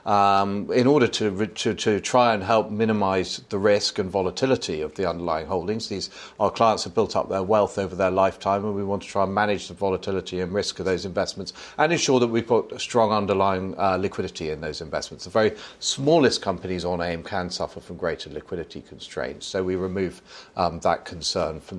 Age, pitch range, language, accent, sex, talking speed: 40-59, 95-120 Hz, English, British, male, 205 wpm